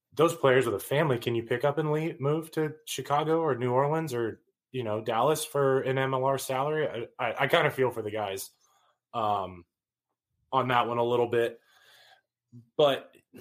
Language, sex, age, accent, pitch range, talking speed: English, male, 20-39, American, 115-135 Hz, 190 wpm